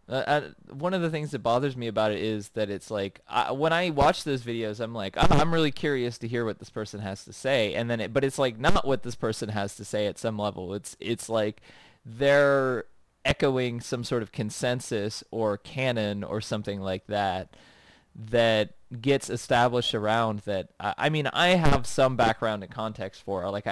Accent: American